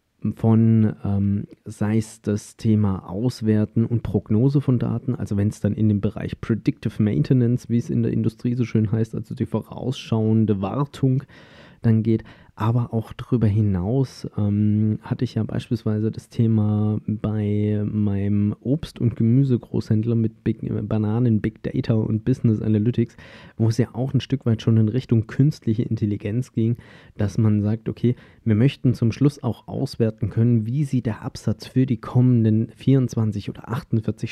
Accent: German